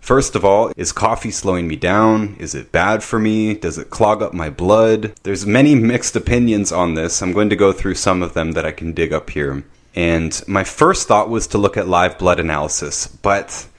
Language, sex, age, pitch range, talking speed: English, male, 30-49, 85-105 Hz, 220 wpm